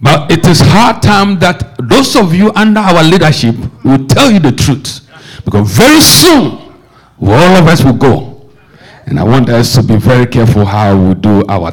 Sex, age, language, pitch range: male, 60-79, English, 125-185 Hz